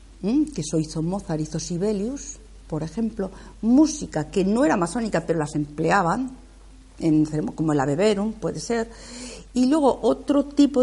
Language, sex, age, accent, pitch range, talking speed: Spanish, female, 50-69, Spanish, 155-215 Hz, 150 wpm